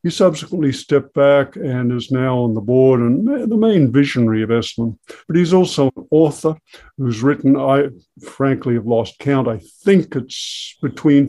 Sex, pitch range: male, 120-140 Hz